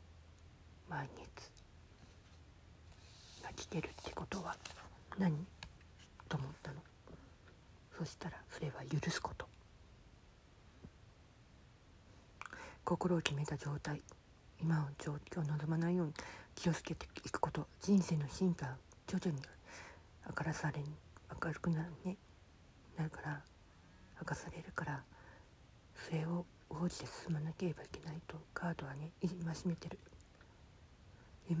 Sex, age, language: female, 50-69, Japanese